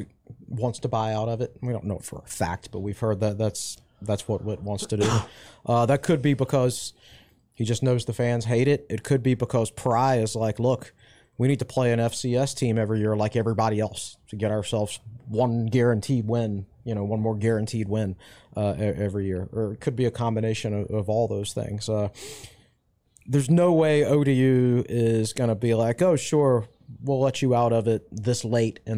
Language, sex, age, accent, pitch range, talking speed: English, male, 30-49, American, 105-125 Hz, 210 wpm